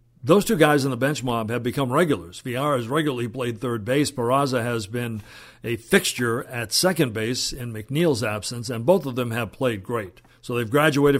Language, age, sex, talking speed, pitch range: English, 50-69, male, 200 wpm, 120-145 Hz